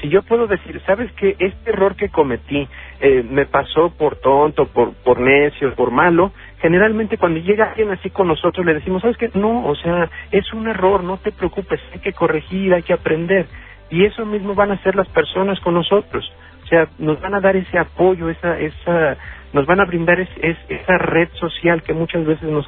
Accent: Mexican